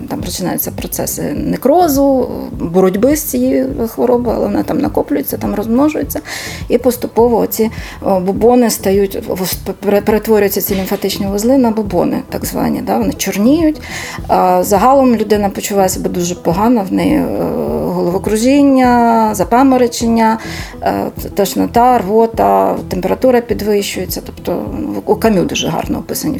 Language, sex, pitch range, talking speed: Ukrainian, female, 195-250 Hz, 115 wpm